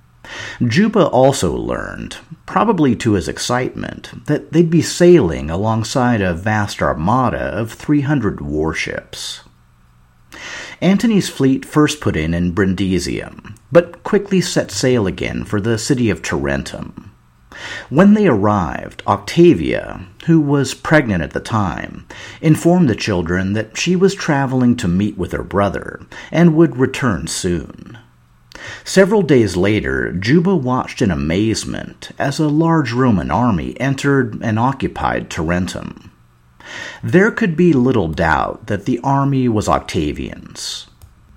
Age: 50-69